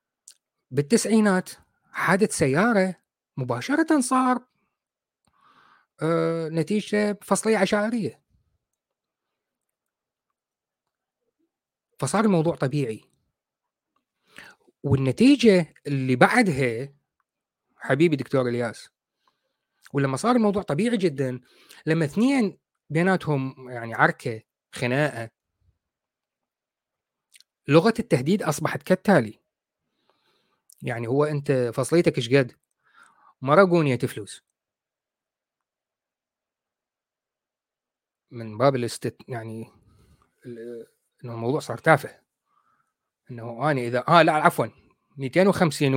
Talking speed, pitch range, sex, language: 70 wpm, 130-190 Hz, male, Arabic